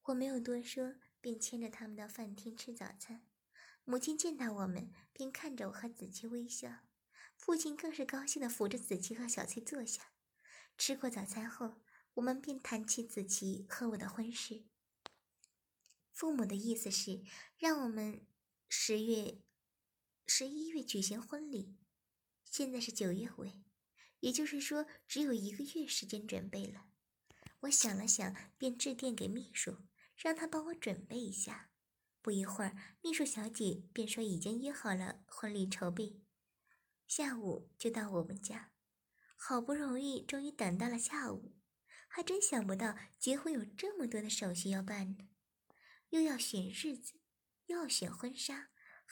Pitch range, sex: 200-275 Hz, male